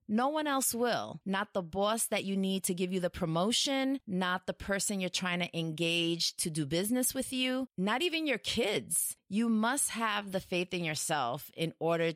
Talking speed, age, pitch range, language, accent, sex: 195 wpm, 30-49, 160-220 Hz, English, American, female